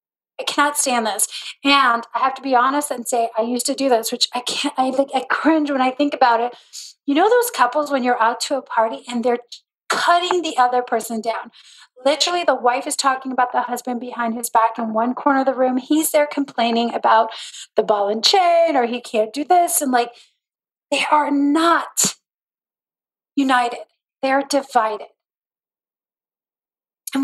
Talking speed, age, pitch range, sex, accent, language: 185 wpm, 40-59, 230-275 Hz, female, American, English